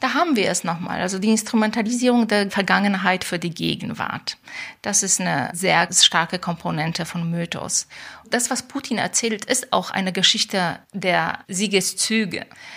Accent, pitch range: German, 180-210 Hz